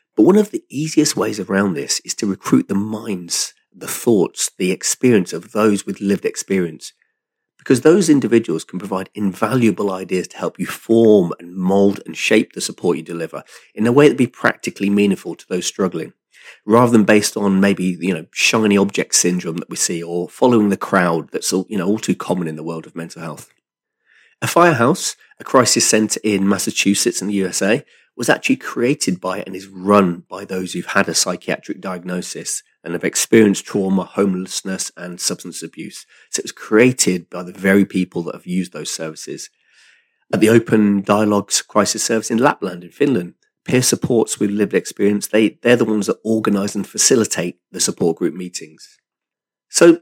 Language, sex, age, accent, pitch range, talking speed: English, male, 40-59, British, 95-115 Hz, 185 wpm